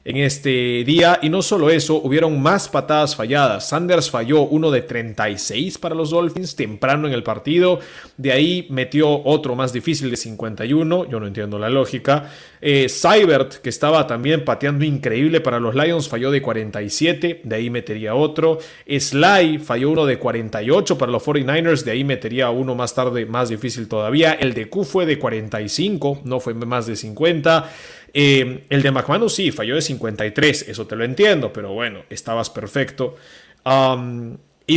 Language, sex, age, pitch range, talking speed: Spanish, male, 30-49, 125-160 Hz, 170 wpm